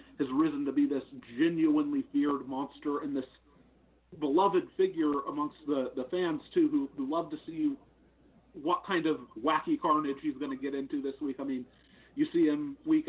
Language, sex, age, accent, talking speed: English, male, 40-59, American, 185 wpm